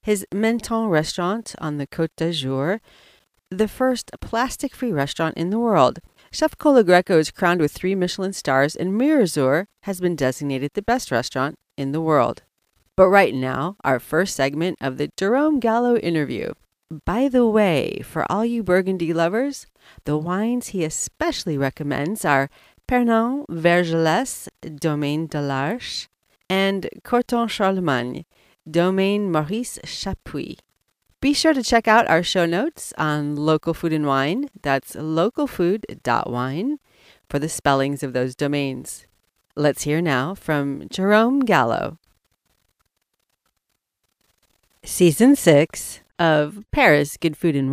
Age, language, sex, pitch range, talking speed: 40-59, English, female, 150-215 Hz, 130 wpm